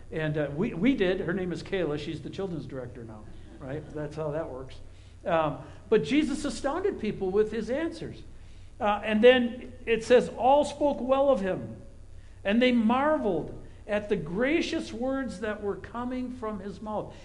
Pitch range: 150-235 Hz